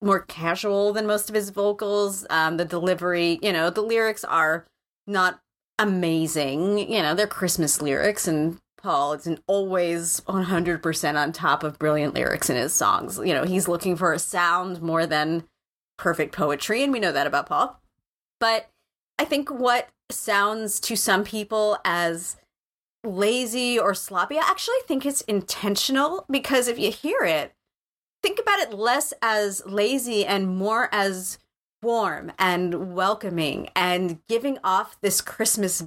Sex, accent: female, American